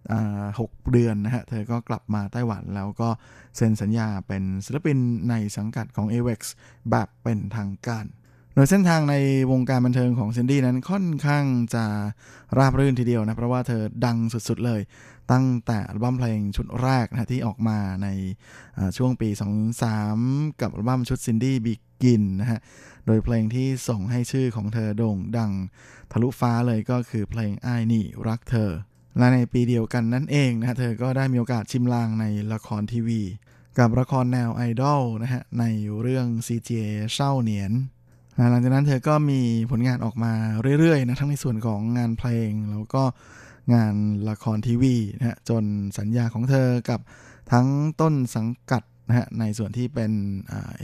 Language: Thai